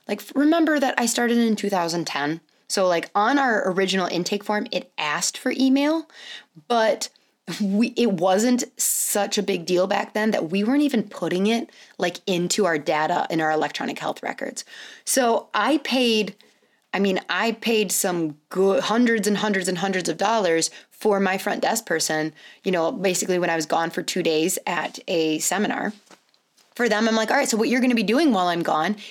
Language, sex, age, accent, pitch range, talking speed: English, female, 20-39, American, 180-230 Hz, 190 wpm